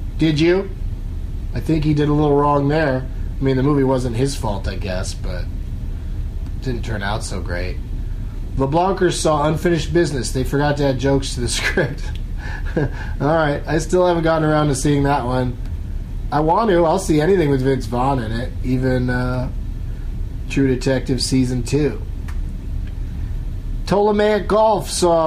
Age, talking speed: 30-49, 165 wpm